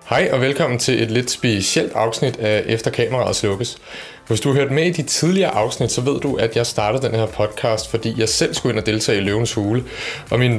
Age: 30-49